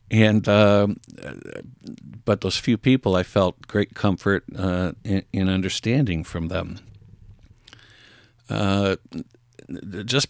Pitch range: 95-115 Hz